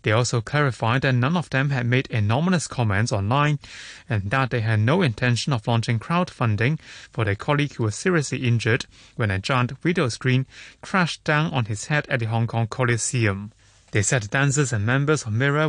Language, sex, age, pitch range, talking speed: English, male, 30-49, 115-140 Hz, 190 wpm